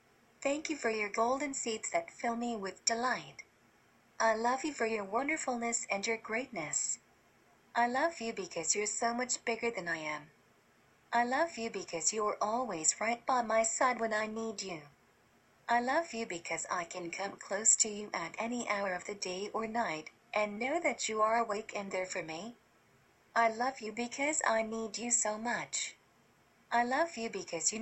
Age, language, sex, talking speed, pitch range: 40-59, English, female, 190 wpm, 195-240 Hz